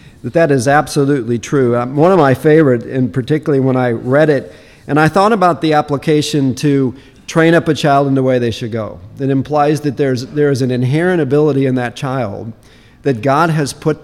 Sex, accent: male, American